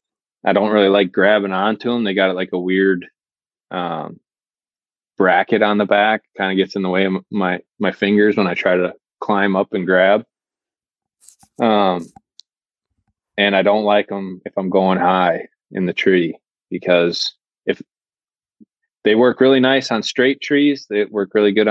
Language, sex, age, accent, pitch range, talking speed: English, male, 20-39, American, 95-105 Hz, 170 wpm